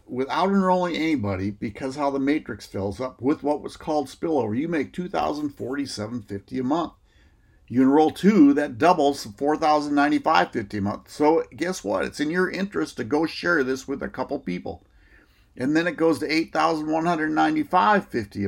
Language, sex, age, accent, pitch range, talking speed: English, male, 50-69, American, 105-160 Hz, 160 wpm